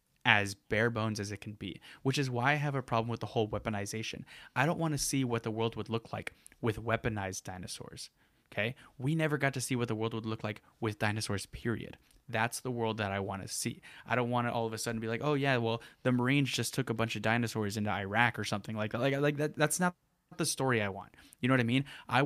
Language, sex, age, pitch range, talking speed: English, male, 10-29, 110-135 Hz, 260 wpm